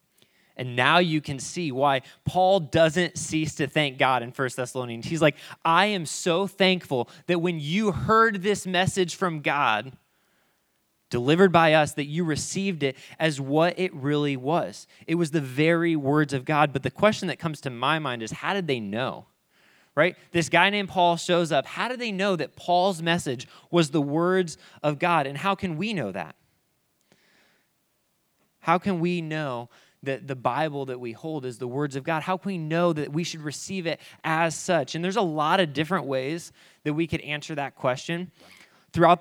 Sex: male